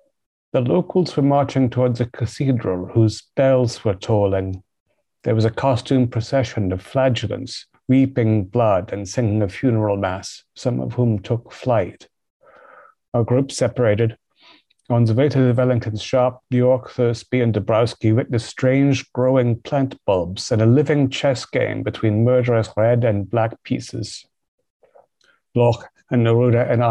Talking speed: 145 wpm